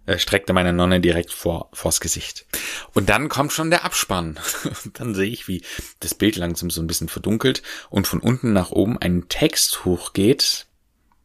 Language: German